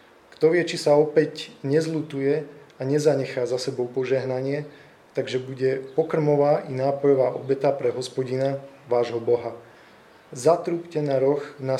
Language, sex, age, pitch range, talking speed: Slovak, male, 20-39, 125-150 Hz, 125 wpm